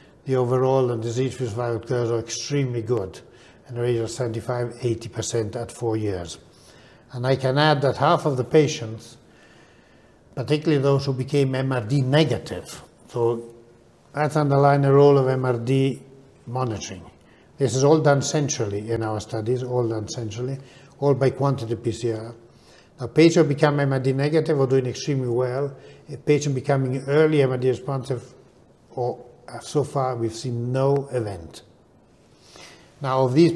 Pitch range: 120-140 Hz